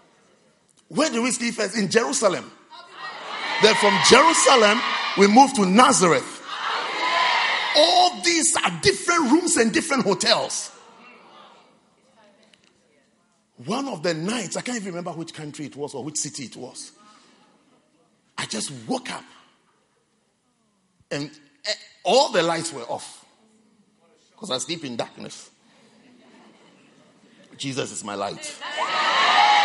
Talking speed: 115 wpm